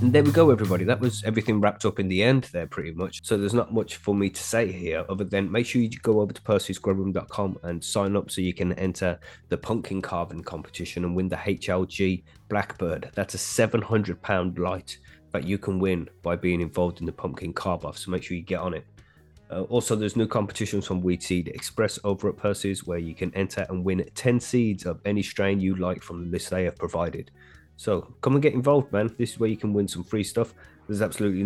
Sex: male